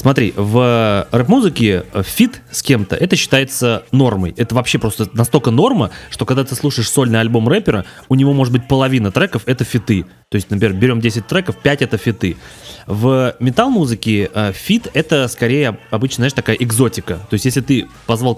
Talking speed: 175 wpm